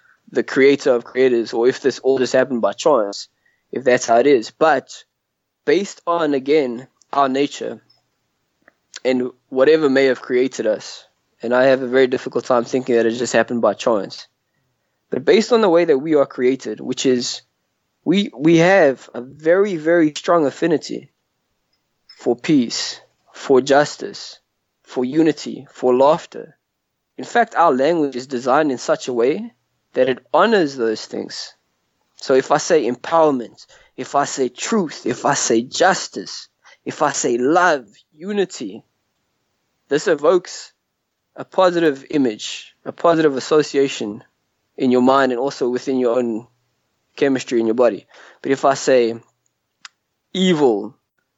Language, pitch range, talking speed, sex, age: English, 125-160 Hz, 150 wpm, male, 20-39